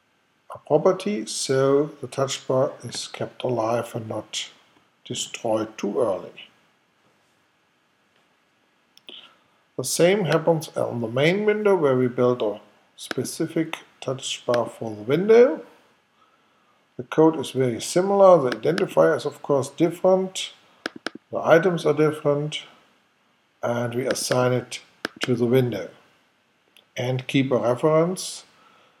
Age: 50-69